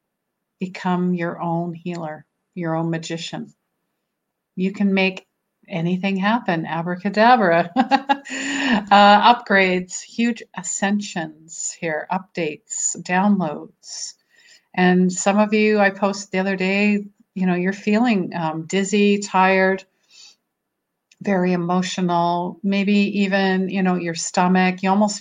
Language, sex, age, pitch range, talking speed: English, female, 50-69, 175-200 Hz, 110 wpm